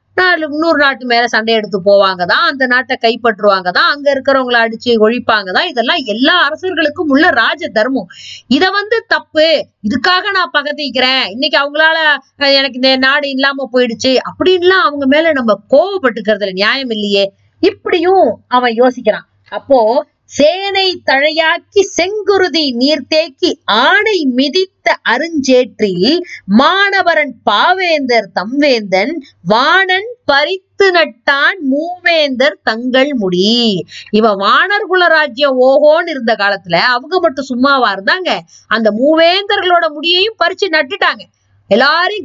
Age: 20-39